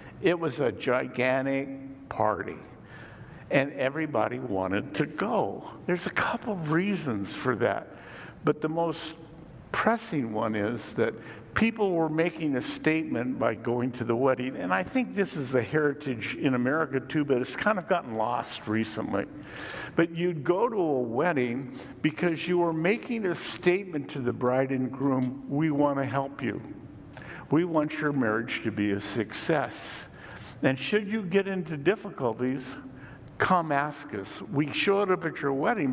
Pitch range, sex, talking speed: 120-165 Hz, male, 160 wpm